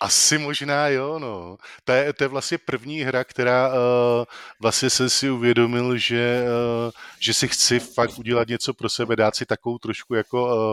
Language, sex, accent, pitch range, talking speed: Czech, male, native, 100-120 Hz, 160 wpm